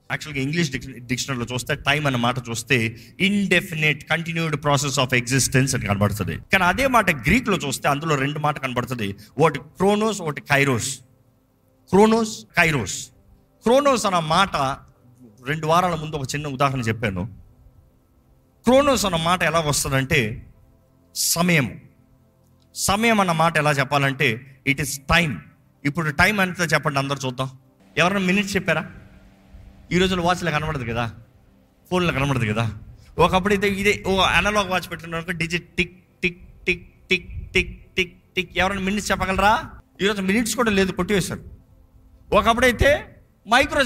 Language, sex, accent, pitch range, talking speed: Telugu, male, native, 125-185 Hz, 125 wpm